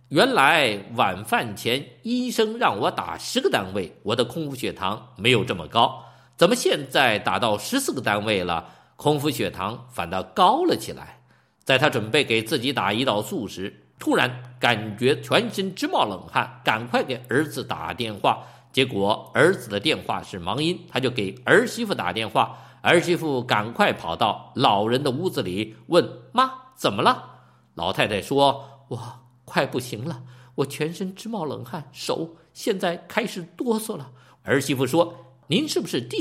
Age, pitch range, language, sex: 50-69, 125-180 Hz, Chinese, male